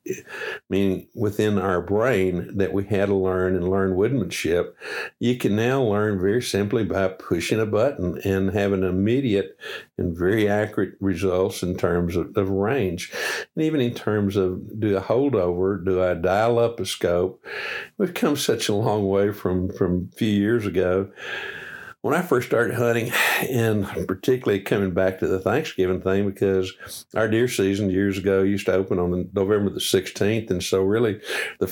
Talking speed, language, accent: 175 wpm, English, American